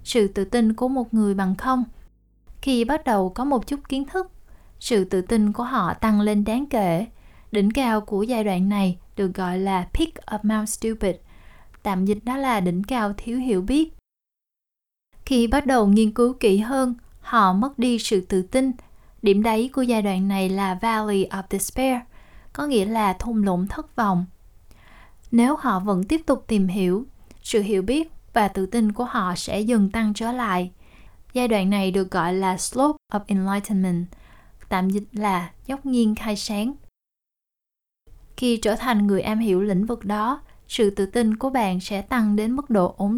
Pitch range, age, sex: 195-245 Hz, 20-39, female